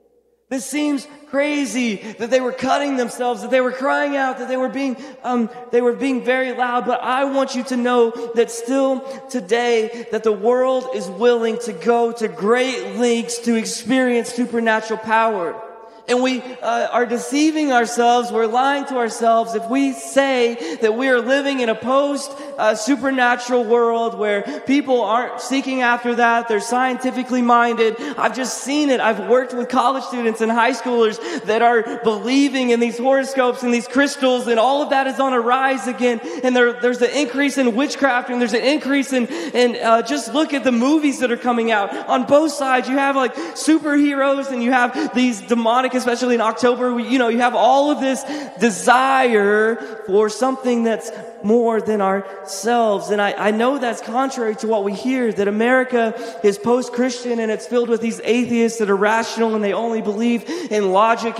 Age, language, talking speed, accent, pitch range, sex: 20-39, English, 185 wpm, American, 230-265 Hz, male